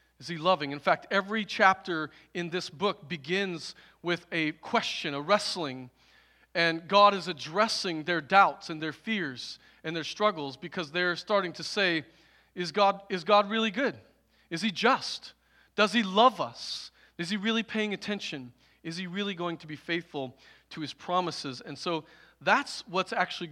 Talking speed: 170 wpm